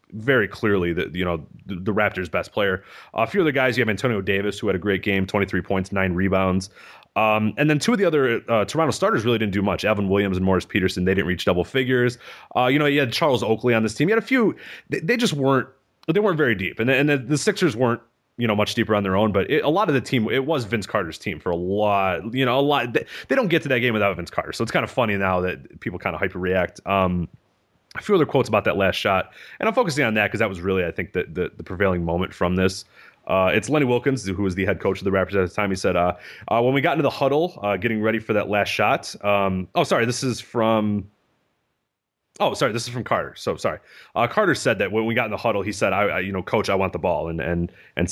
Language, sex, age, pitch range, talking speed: English, male, 30-49, 95-125 Hz, 280 wpm